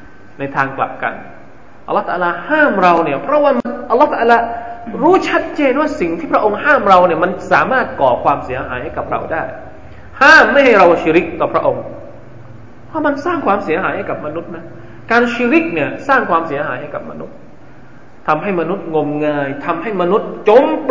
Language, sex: Thai, male